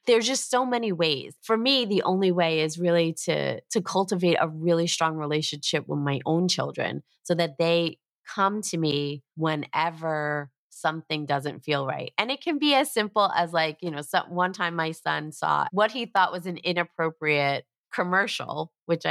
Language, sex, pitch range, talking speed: English, female, 155-190 Hz, 180 wpm